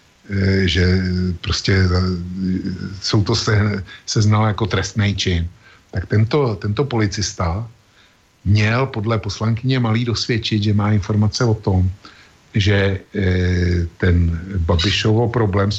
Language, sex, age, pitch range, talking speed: Slovak, male, 50-69, 95-110 Hz, 110 wpm